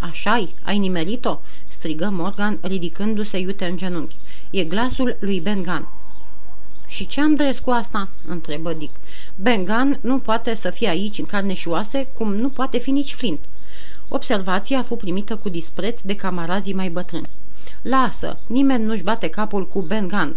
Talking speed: 155 wpm